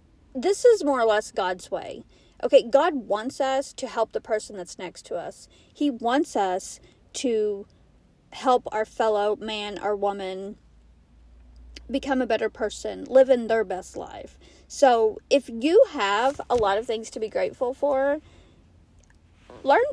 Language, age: English, 40-59